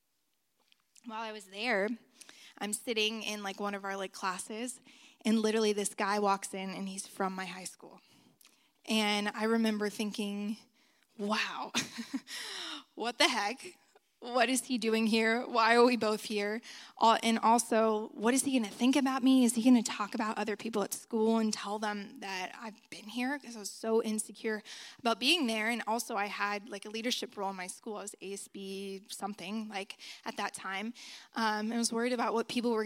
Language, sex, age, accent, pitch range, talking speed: English, female, 20-39, American, 210-245 Hz, 195 wpm